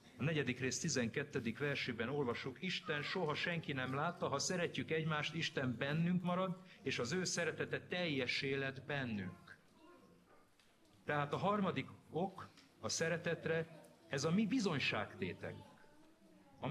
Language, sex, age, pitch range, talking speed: Hungarian, male, 50-69, 120-175 Hz, 125 wpm